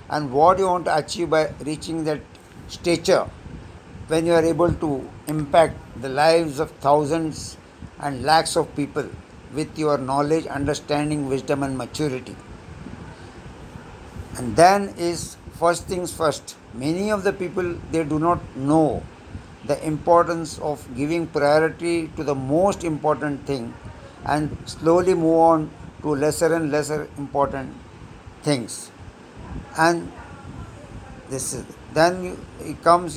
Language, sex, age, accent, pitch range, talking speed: Hindi, male, 60-79, native, 140-165 Hz, 130 wpm